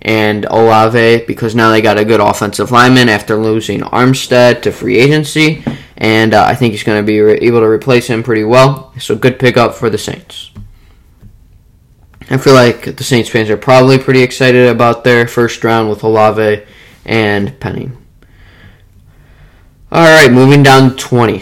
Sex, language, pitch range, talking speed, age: male, English, 110-135 Hz, 165 wpm, 10-29